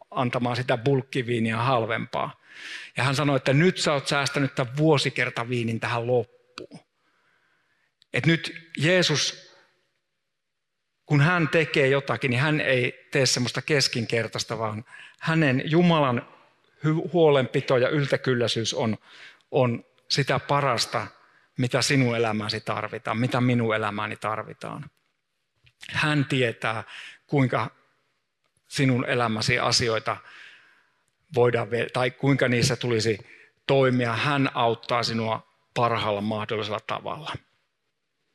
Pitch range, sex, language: 120-150 Hz, male, Finnish